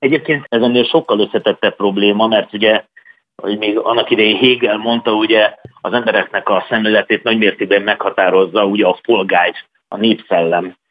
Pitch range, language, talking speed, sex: 100-130 Hz, Hungarian, 145 wpm, male